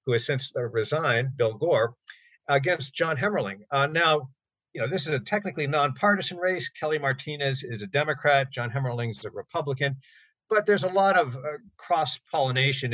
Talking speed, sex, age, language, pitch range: 165 wpm, male, 50-69, English, 120-160 Hz